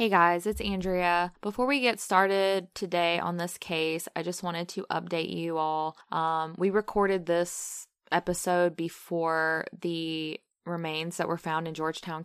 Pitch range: 160-180 Hz